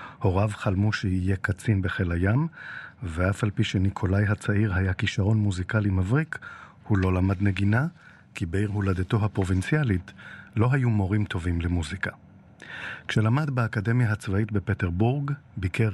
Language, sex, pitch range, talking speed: Hebrew, male, 95-115 Hz, 125 wpm